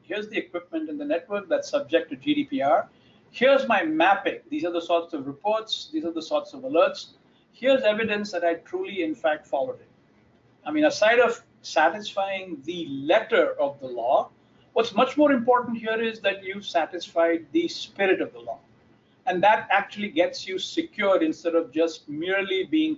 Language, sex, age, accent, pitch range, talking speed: English, male, 50-69, Indian, 170-265 Hz, 180 wpm